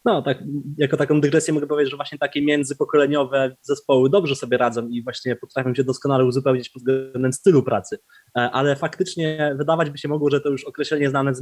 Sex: male